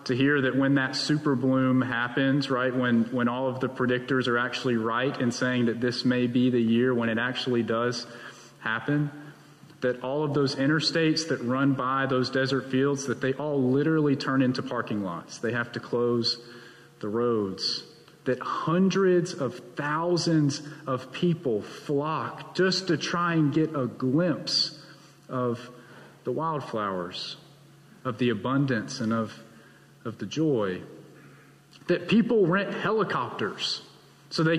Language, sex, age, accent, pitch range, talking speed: English, male, 40-59, American, 130-175 Hz, 150 wpm